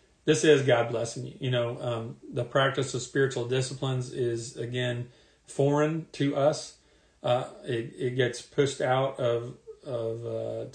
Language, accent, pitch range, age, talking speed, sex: English, American, 115-140 Hz, 40-59, 150 wpm, male